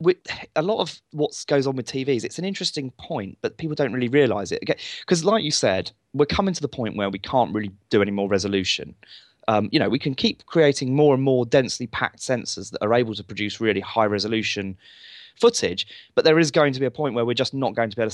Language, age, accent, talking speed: English, 20-39, British, 250 wpm